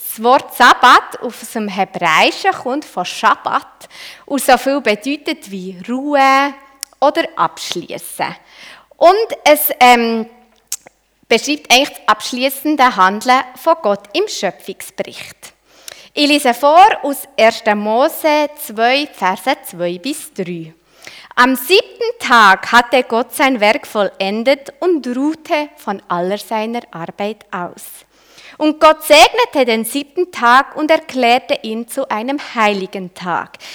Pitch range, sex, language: 215-300 Hz, female, German